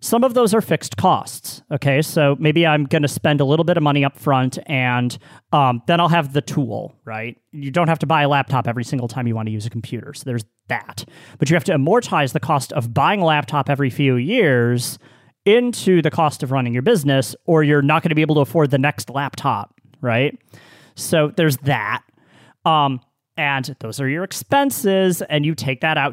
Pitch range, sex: 135-175 Hz, male